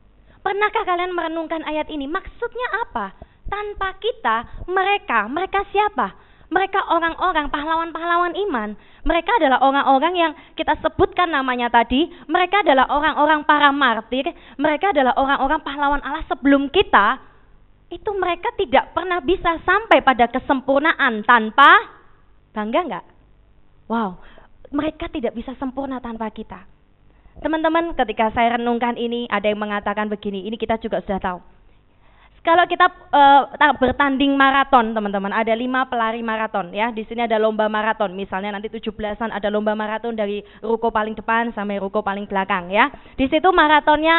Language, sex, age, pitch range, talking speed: Indonesian, female, 20-39, 225-330 Hz, 140 wpm